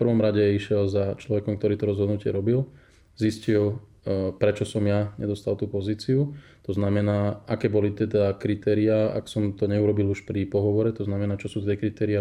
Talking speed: 180 wpm